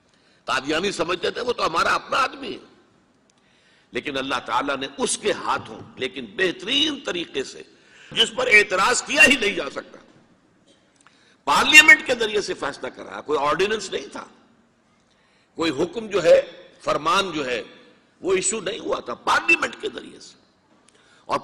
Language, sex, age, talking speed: Urdu, male, 60-79, 150 wpm